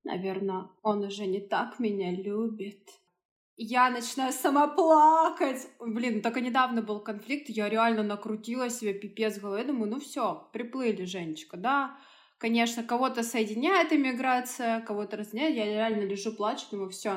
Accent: native